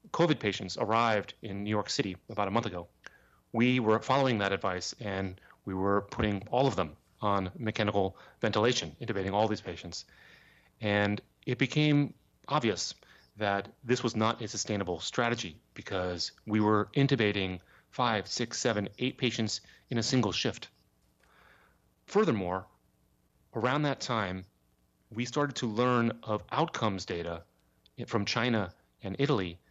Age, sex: 30-49, male